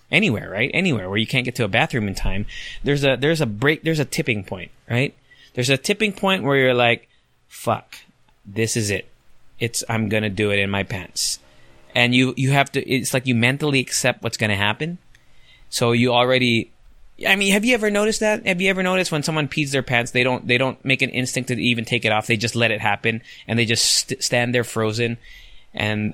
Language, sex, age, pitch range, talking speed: English, male, 20-39, 105-135 Hz, 225 wpm